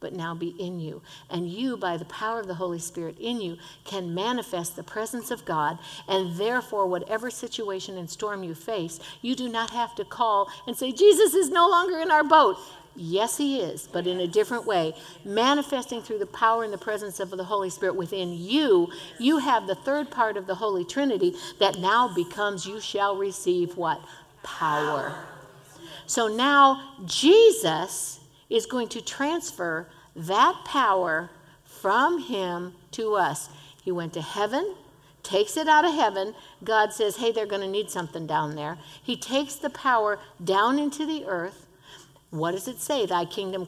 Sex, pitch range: female, 180-275 Hz